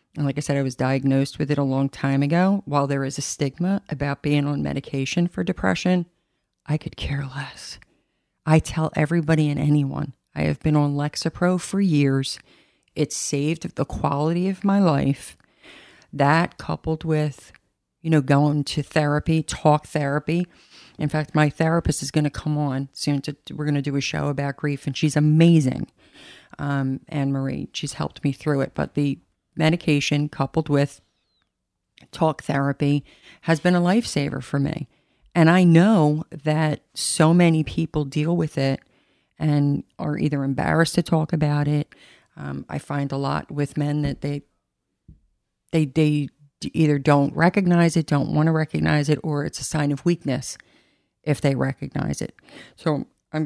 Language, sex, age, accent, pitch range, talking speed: English, female, 40-59, American, 140-160 Hz, 170 wpm